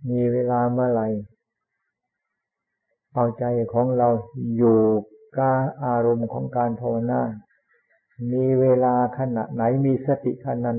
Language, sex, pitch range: Thai, male, 115-130 Hz